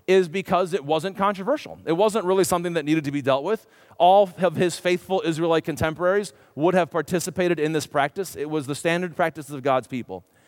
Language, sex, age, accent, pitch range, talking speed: English, male, 40-59, American, 140-190 Hz, 200 wpm